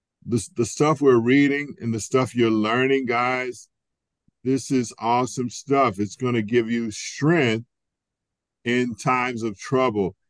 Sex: male